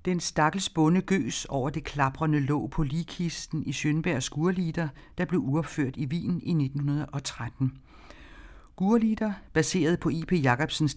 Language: Danish